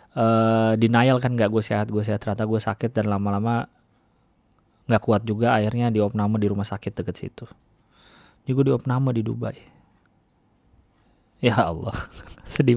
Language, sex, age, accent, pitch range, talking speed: Indonesian, male, 30-49, native, 105-145 Hz, 140 wpm